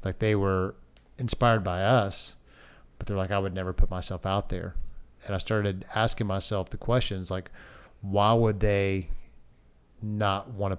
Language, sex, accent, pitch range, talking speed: English, male, American, 95-110 Hz, 160 wpm